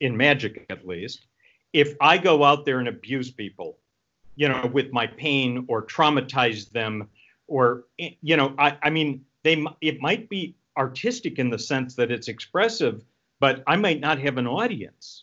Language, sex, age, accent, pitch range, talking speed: English, male, 50-69, American, 120-155 Hz, 175 wpm